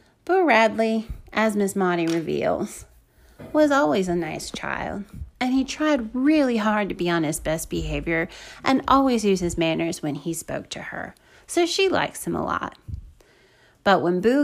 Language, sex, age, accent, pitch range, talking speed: English, female, 30-49, American, 180-250 Hz, 170 wpm